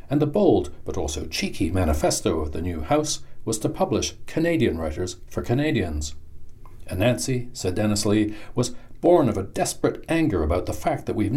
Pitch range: 85-130 Hz